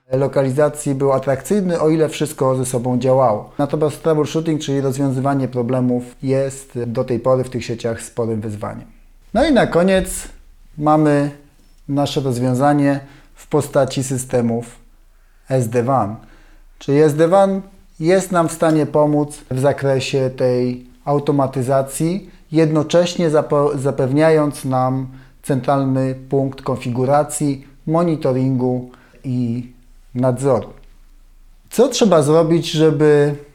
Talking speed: 105 wpm